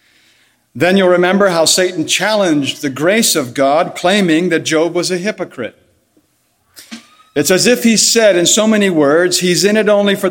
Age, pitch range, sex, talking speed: 60-79, 145-200 Hz, male, 175 wpm